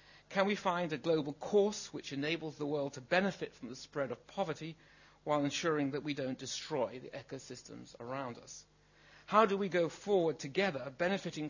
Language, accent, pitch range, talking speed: English, British, 140-175 Hz, 175 wpm